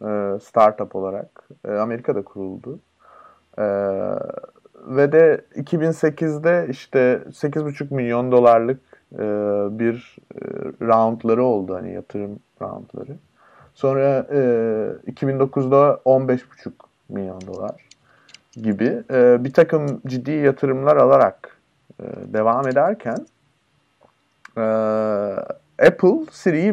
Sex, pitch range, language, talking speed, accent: male, 110-145 Hz, Turkish, 70 wpm, native